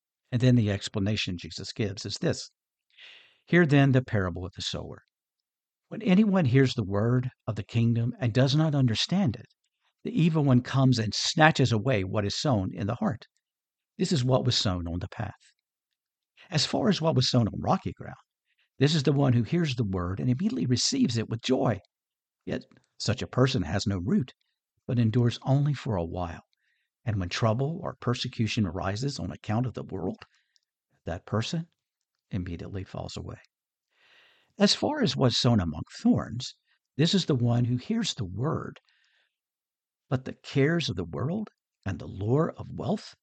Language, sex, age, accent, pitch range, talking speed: English, male, 50-69, American, 105-140 Hz, 175 wpm